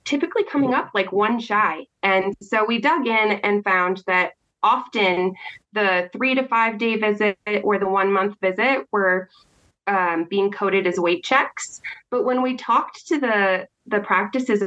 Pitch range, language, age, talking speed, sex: 185-250 Hz, English, 20-39, 170 wpm, female